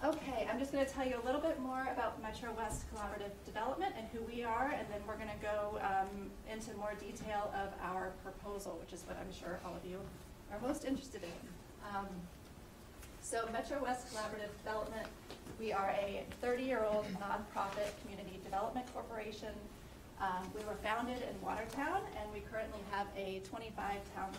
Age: 30-49